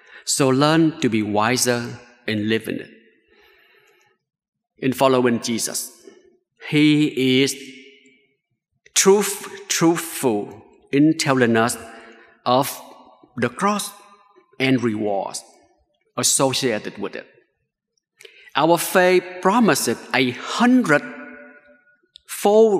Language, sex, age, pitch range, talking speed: English, male, 50-69, 130-190 Hz, 85 wpm